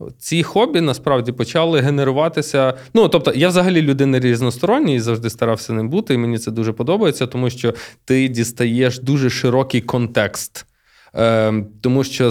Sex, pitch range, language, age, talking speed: male, 120-150 Hz, Ukrainian, 20-39, 145 wpm